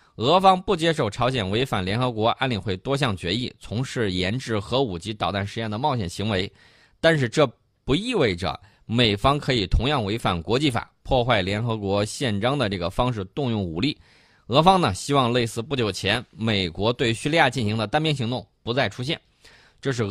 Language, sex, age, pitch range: Chinese, male, 20-39, 105-140 Hz